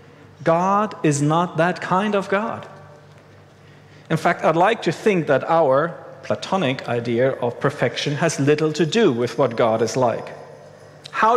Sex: male